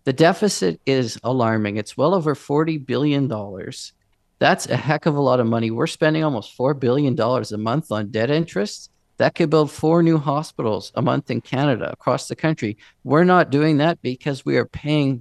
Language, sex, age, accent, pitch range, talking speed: English, male, 50-69, American, 120-155 Hz, 190 wpm